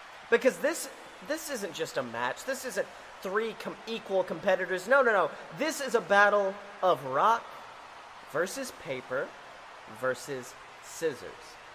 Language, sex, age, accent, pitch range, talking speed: English, male, 30-49, American, 175-250 Hz, 135 wpm